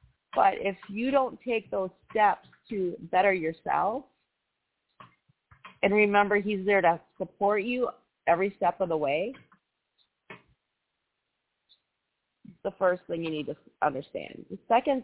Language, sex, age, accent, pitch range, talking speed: English, female, 40-59, American, 185-225 Hz, 125 wpm